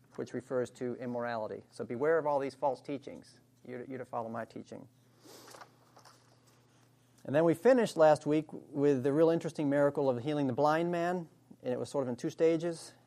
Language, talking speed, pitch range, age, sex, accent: English, 185 wpm, 125-155 Hz, 40-59, male, American